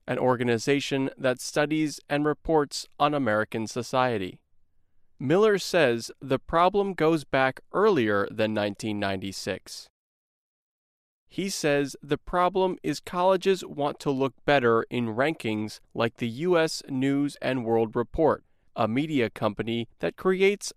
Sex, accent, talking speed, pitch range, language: male, American, 120 wpm, 120-160 Hz, English